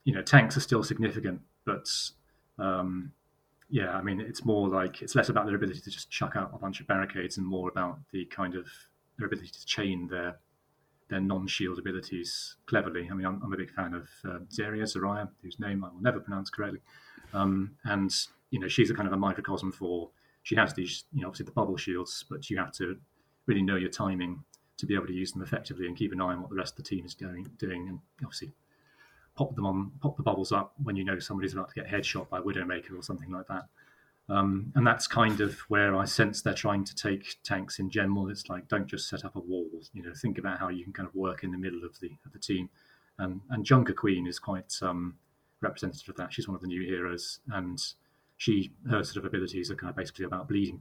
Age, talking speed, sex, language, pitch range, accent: 30-49, 235 wpm, male, English, 90-105 Hz, British